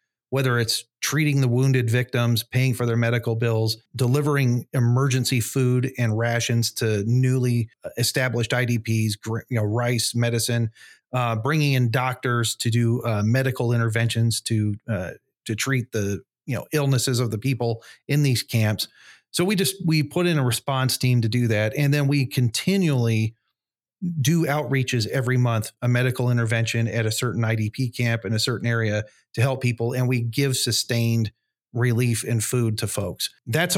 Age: 40-59